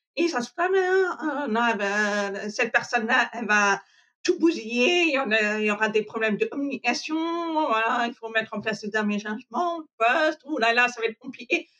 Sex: female